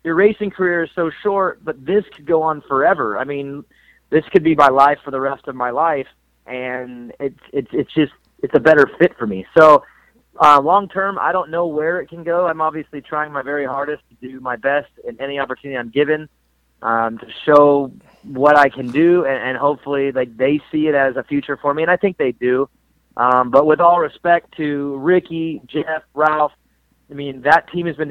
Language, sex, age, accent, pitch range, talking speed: English, male, 30-49, American, 135-155 Hz, 215 wpm